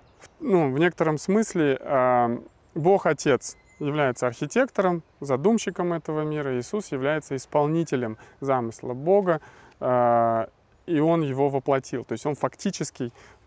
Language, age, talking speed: Russian, 20-39, 110 wpm